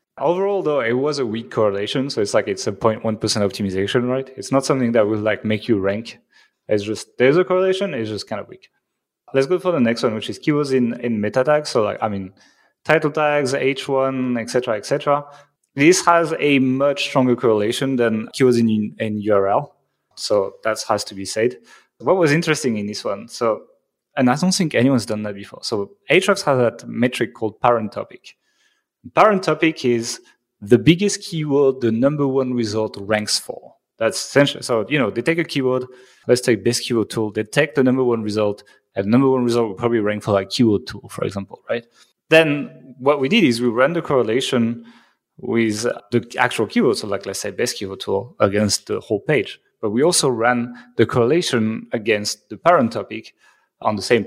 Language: English